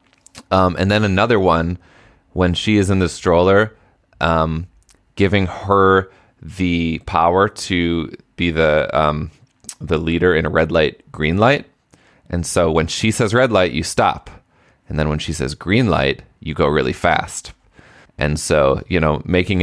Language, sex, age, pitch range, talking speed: English, male, 20-39, 80-95 Hz, 160 wpm